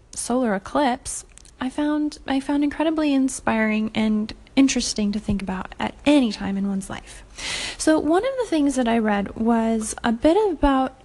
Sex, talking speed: female, 170 wpm